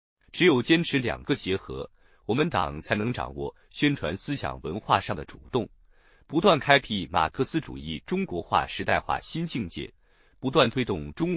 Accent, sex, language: native, male, Chinese